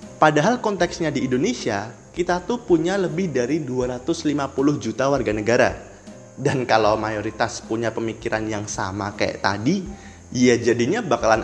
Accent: native